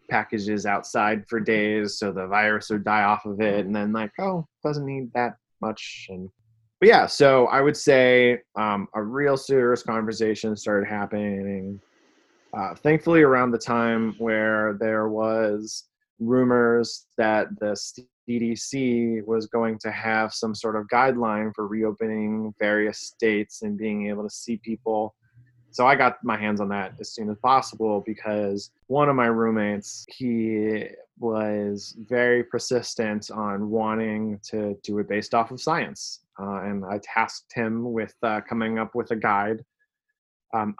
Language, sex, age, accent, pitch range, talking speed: English, male, 20-39, American, 105-125 Hz, 155 wpm